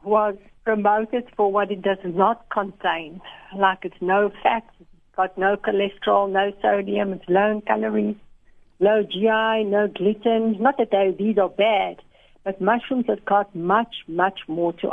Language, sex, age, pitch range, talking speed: English, female, 60-79, 180-220 Hz, 155 wpm